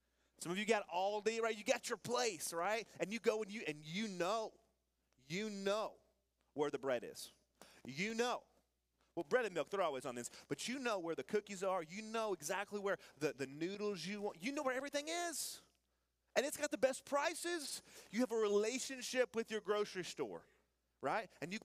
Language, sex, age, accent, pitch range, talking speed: English, male, 30-49, American, 155-230 Hz, 200 wpm